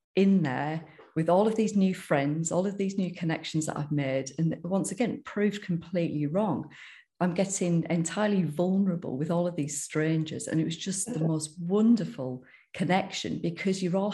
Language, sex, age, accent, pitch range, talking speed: English, female, 40-59, British, 150-175 Hz, 180 wpm